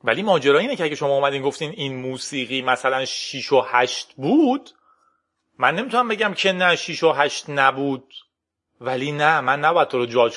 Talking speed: 180 wpm